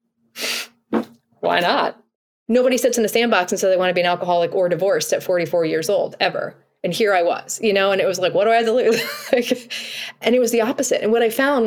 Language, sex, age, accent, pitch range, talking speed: English, female, 20-39, American, 180-230 Hz, 245 wpm